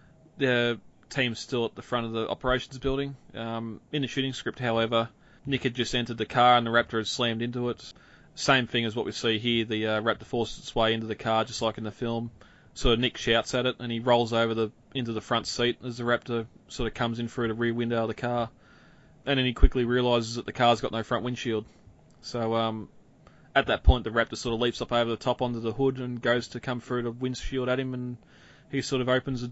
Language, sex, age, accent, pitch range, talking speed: English, male, 20-39, Australian, 115-130 Hz, 250 wpm